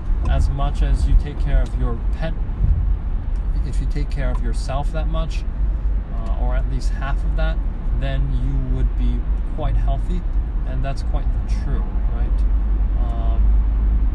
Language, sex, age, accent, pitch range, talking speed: English, male, 20-39, American, 65-80 Hz, 155 wpm